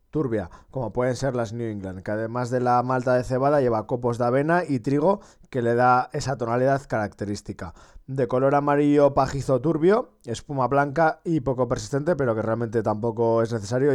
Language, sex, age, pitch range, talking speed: Spanish, male, 20-39, 120-145 Hz, 180 wpm